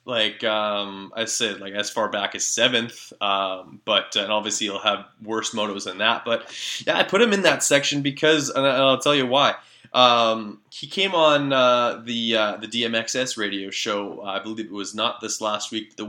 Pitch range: 105-130 Hz